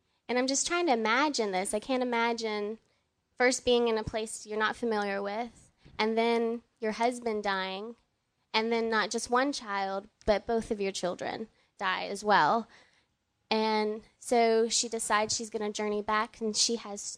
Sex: female